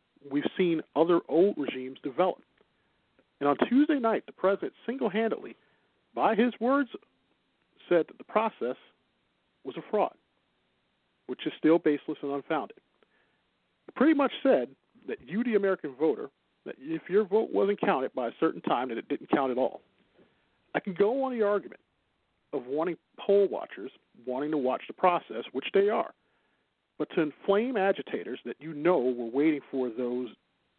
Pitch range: 140-200 Hz